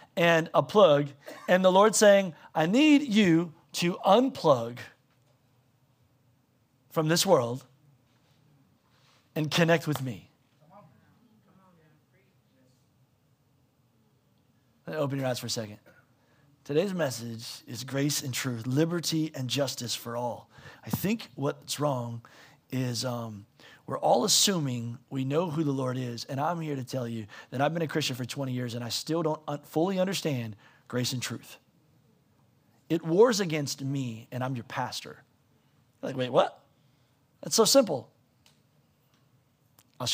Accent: American